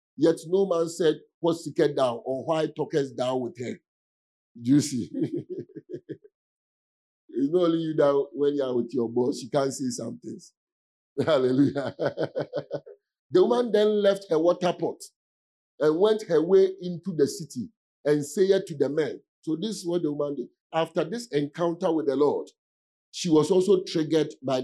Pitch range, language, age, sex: 140-190 Hz, English, 50-69, male